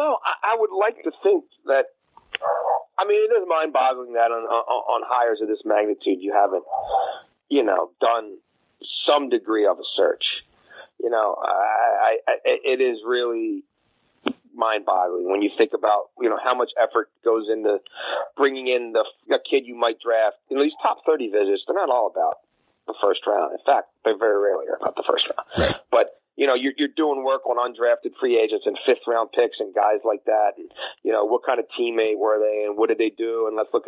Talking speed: 205 wpm